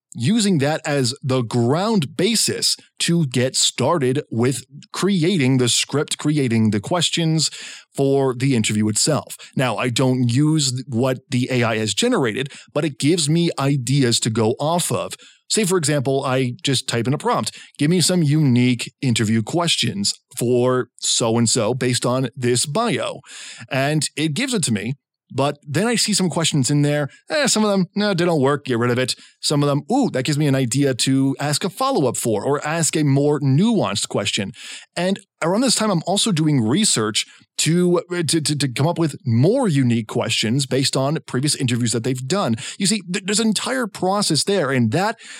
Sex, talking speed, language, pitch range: male, 185 wpm, English, 125-170 Hz